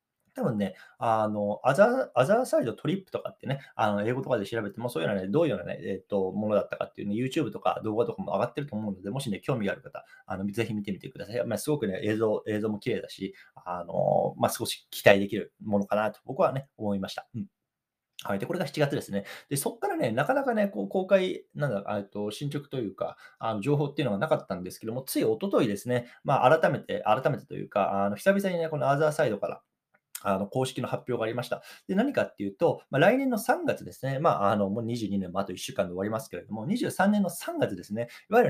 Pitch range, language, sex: 100-150 Hz, Japanese, male